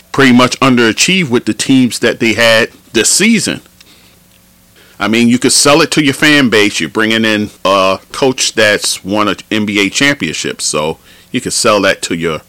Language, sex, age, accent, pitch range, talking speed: English, male, 40-59, American, 90-125 Hz, 185 wpm